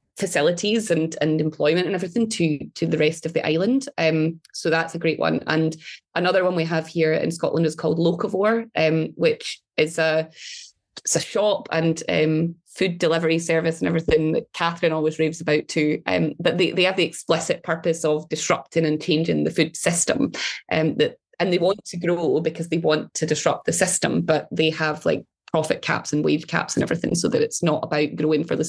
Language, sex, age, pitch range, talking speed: English, female, 20-39, 155-170 Hz, 205 wpm